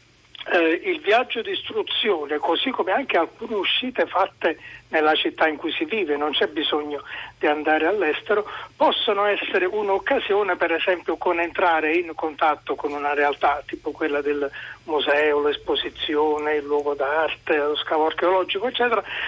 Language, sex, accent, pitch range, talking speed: Italian, male, native, 155-225 Hz, 145 wpm